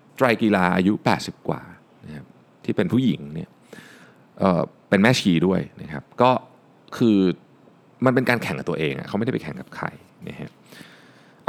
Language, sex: Thai, male